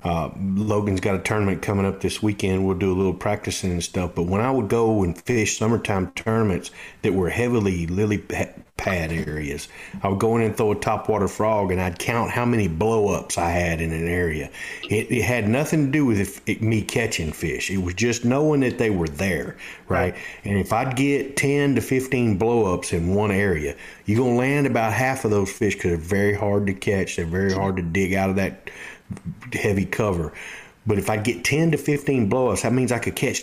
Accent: American